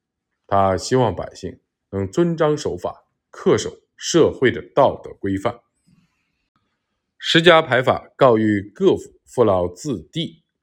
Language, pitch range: Chinese, 100-160 Hz